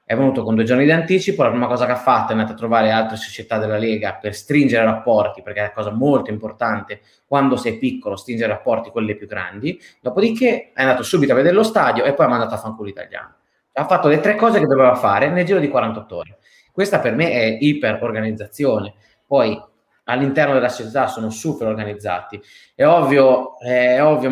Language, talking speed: Italian, 200 wpm